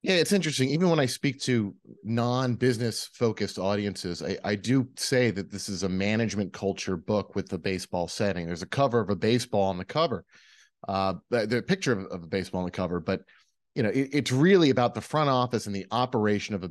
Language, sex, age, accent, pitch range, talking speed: English, male, 30-49, American, 95-130 Hz, 210 wpm